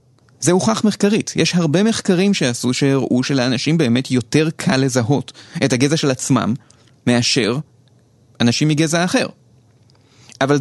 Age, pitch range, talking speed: 30-49, 120-155 Hz, 125 wpm